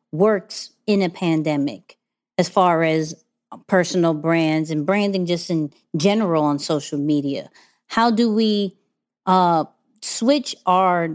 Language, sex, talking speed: English, female, 125 wpm